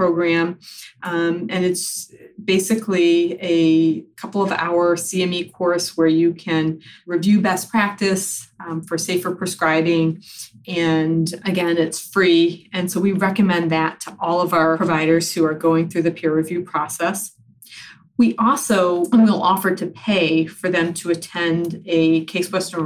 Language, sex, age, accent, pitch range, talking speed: English, female, 30-49, American, 165-190 Hz, 145 wpm